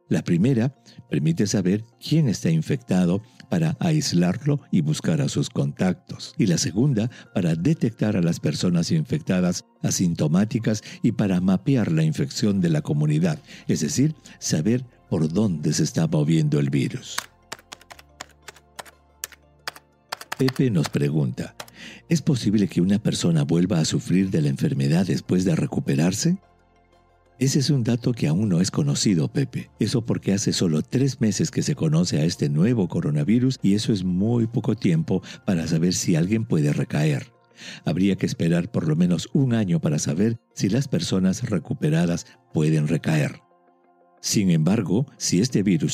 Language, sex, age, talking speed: English, male, 50-69, 150 wpm